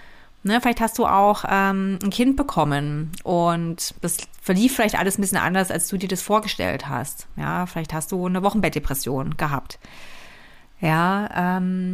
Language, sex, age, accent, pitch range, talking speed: German, female, 30-49, German, 185-245 Hz, 145 wpm